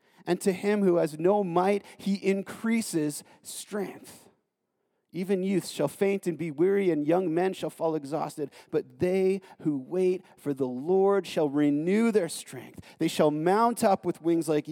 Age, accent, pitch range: 30-49, American, 160-200 Hz